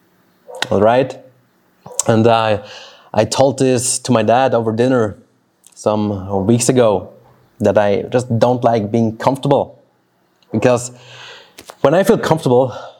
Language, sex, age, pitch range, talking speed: English, male, 30-49, 110-140 Hz, 125 wpm